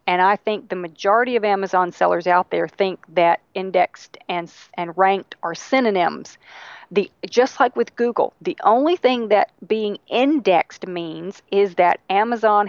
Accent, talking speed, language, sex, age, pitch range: American, 155 wpm, English, female, 40-59, 180-225 Hz